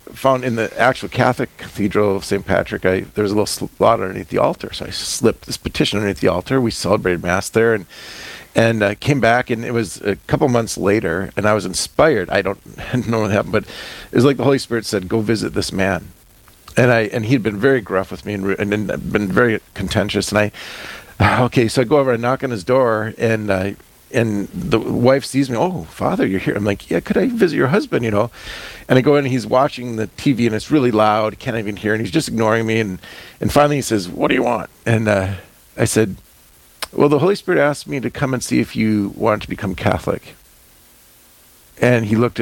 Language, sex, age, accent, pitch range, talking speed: English, male, 40-59, American, 100-125 Hz, 235 wpm